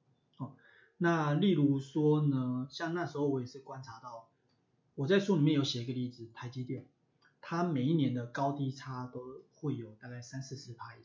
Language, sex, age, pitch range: Chinese, male, 30-49, 125-145 Hz